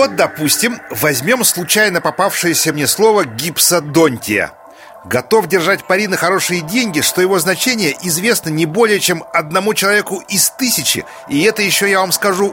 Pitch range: 165-210 Hz